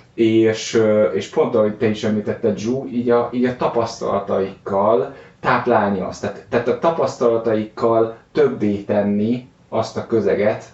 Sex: male